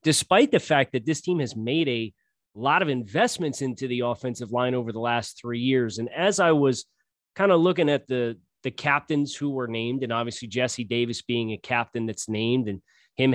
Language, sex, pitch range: English, male, 125-160 Hz